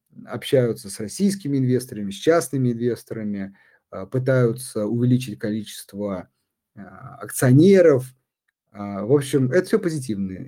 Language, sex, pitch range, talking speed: Russian, male, 115-150 Hz, 90 wpm